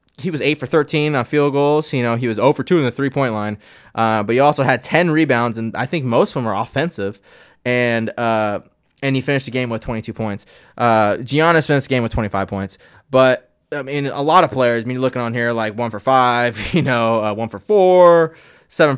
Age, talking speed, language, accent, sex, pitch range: 20-39, 245 wpm, English, American, male, 115-150 Hz